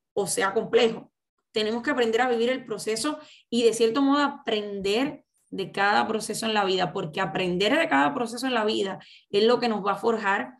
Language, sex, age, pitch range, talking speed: Spanish, female, 10-29, 210-240 Hz, 205 wpm